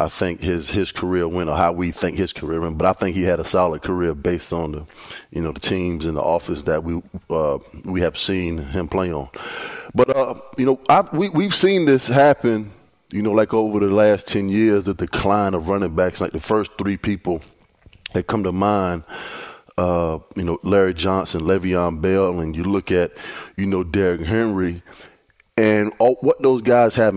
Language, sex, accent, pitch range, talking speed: English, male, American, 90-110 Hz, 205 wpm